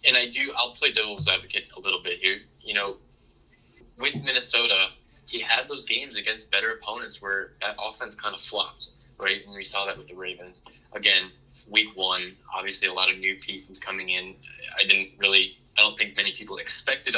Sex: male